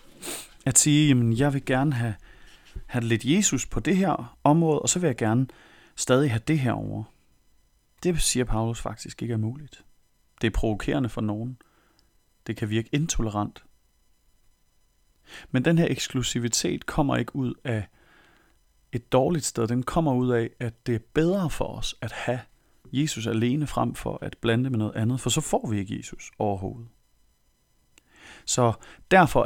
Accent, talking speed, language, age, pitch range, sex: native, 165 wpm, Danish, 30-49, 105-130 Hz, male